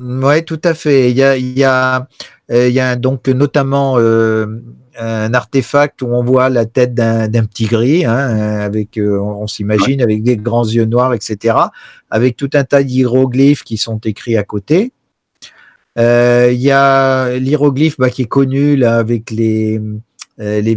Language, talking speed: French, 180 wpm